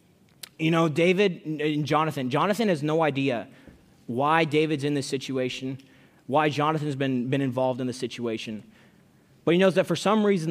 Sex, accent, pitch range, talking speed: male, American, 135-170 Hz, 165 wpm